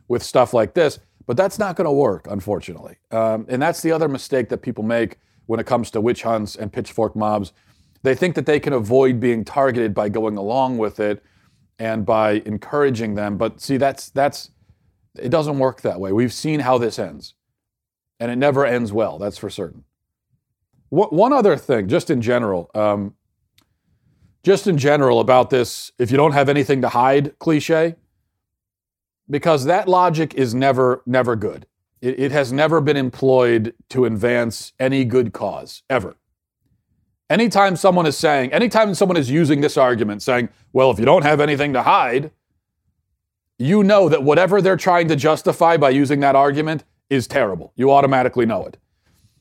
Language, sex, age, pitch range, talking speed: English, male, 40-59, 105-145 Hz, 175 wpm